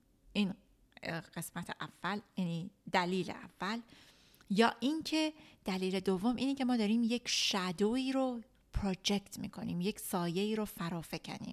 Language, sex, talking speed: Persian, female, 125 wpm